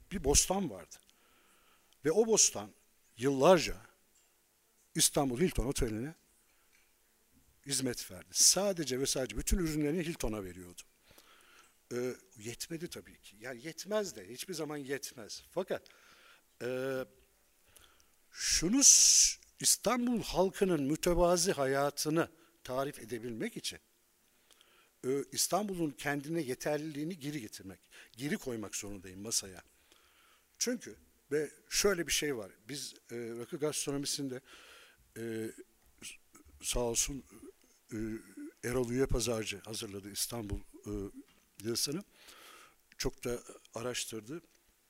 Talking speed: 100 wpm